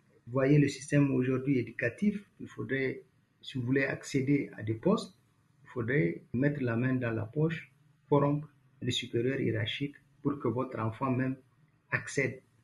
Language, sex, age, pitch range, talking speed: French, male, 50-69, 125-160 Hz, 155 wpm